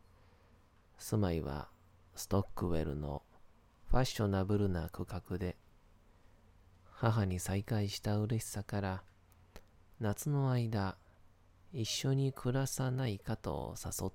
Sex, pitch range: male, 90-105 Hz